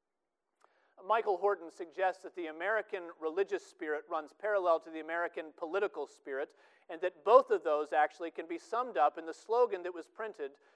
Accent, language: American, English